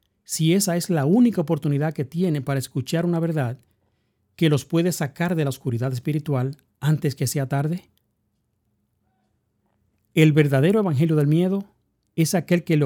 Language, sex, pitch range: English, male, 125-170 Hz